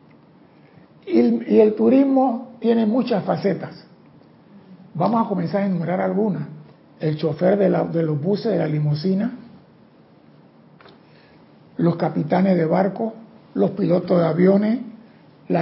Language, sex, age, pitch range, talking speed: Spanish, male, 60-79, 170-205 Hz, 115 wpm